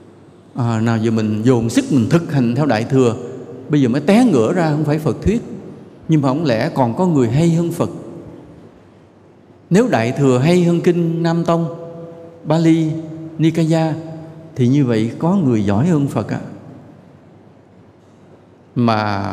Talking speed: 160 wpm